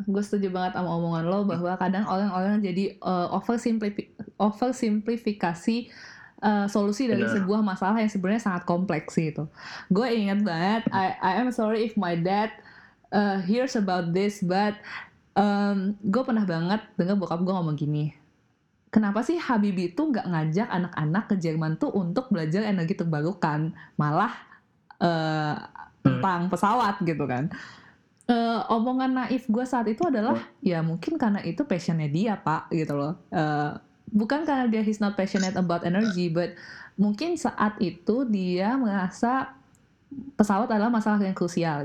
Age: 20-39